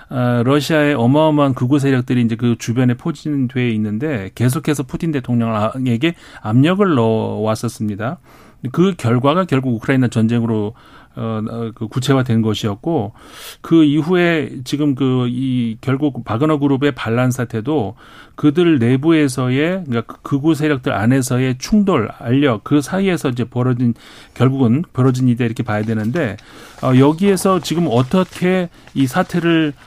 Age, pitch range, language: 40-59, 120-150 Hz, Korean